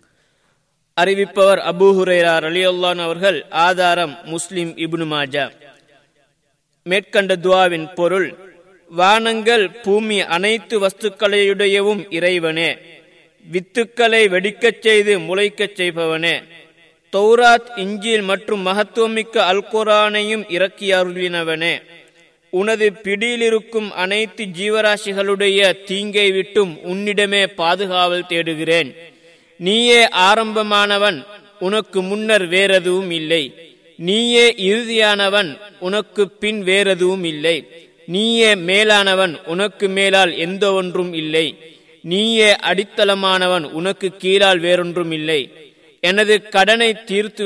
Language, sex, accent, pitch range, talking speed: Tamil, male, native, 170-205 Hz, 80 wpm